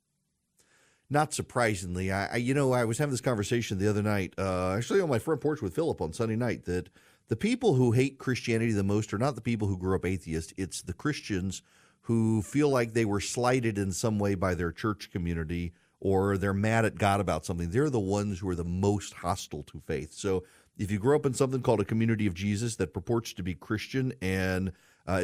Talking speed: 220 wpm